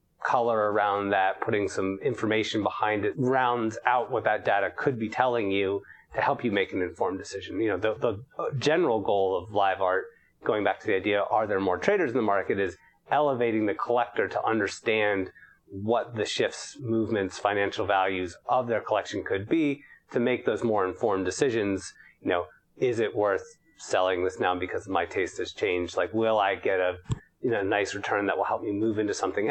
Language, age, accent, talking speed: English, 30-49, American, 195 wpm